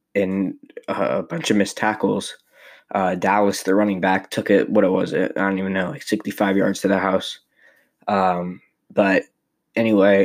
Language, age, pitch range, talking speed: English, 10-29, 95-105 Hz, 175 wpm